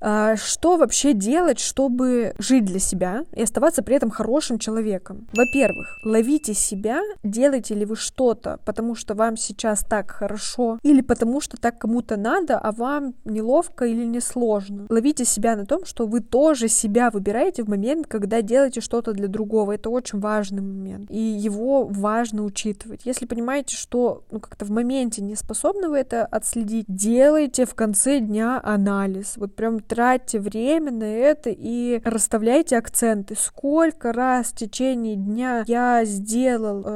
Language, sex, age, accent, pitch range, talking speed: Russian, female, 20-39, native, 215-255 Hz, 155 wpm